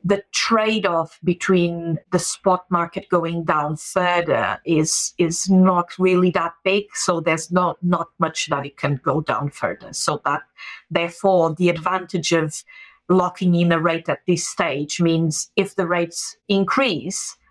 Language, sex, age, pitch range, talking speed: English, female, 30-49, 155-180 Hz, 150 wpm